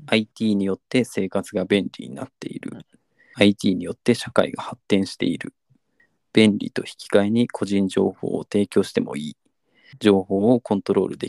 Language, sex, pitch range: Japanese, male, 100-135 Hz